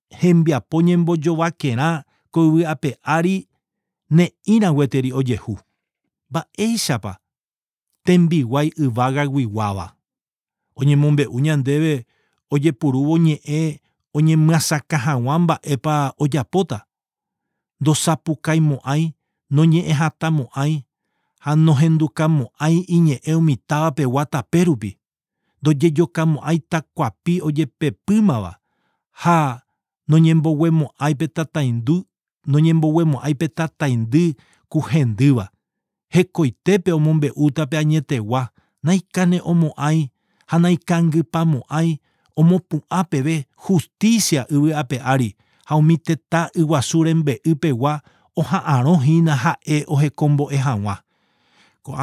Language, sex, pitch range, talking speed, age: English, male, 140-165 Hz, 90 wpm, 50-69